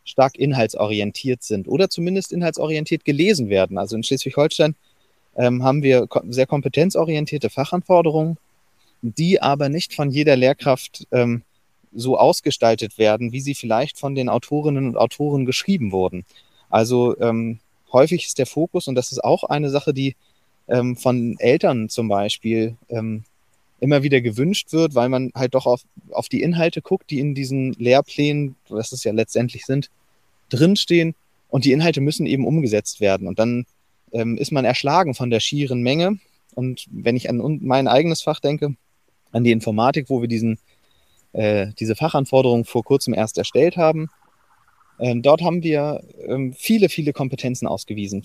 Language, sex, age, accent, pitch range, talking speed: German, male, 30-49, German, 115-150 Hz, 160 wpm